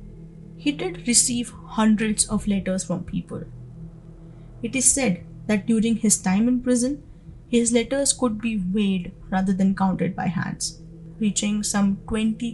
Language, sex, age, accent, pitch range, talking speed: English, female, 20-39, Indian, 165-225 Hz, 145 wpm